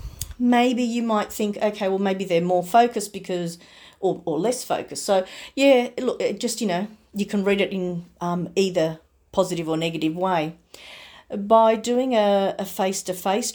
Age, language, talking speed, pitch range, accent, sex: 40-59, English, 175 wpm, 180-215 Hz, Australian, female